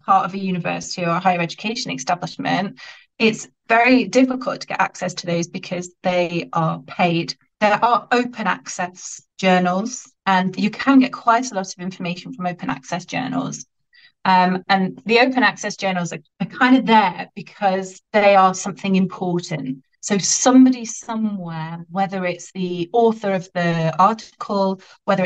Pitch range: 170-210 Hz